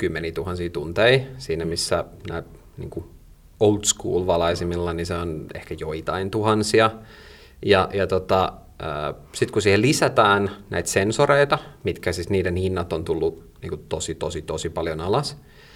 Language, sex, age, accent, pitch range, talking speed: Finnish, male, 30-49, native, 90-110 Hz, 120 wpm